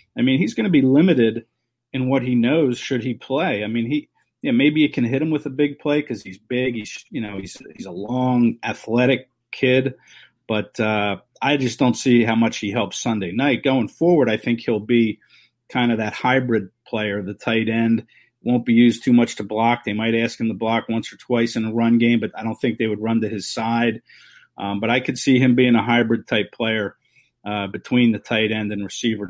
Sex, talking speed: male, 230 wpm